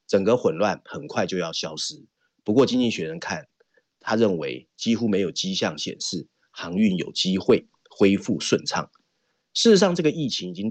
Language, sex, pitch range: Chinese, male, 105-175 Hz